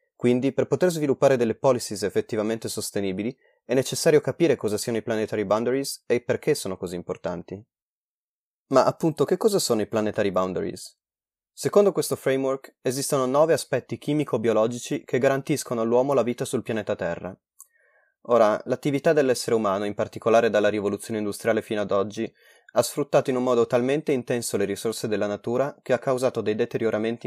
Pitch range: 105-130 Hz